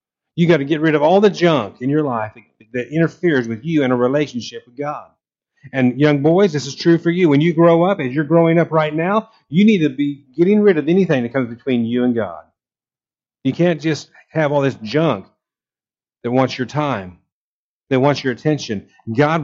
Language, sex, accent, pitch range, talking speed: English, male, American, 125-170 Hz, 215 wpm